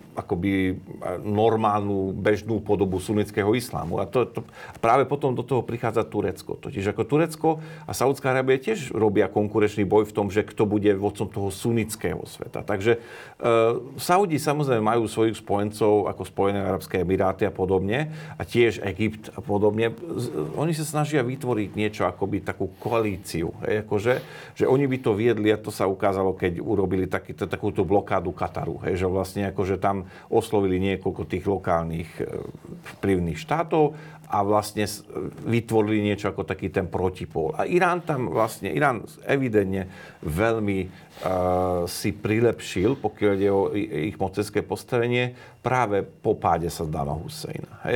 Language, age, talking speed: Slovak, 40-59, 150 wpm